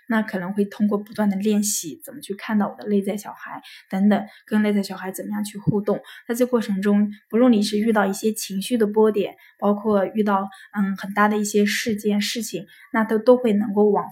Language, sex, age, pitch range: Chinese, female, 10-29, 195-220 Hz